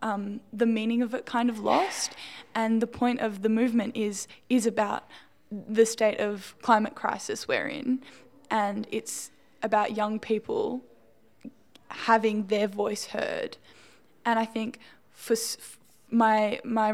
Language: English